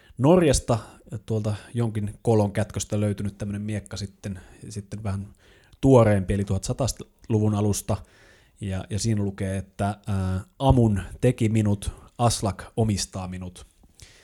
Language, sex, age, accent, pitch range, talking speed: Finnish, male, 30-49, native, 95-110 Hz, 110 wpm